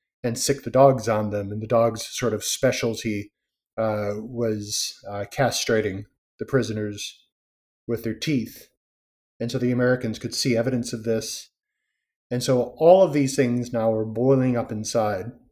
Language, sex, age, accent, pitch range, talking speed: English, male, 30-49, American, 110-130 Hz, 160 wpm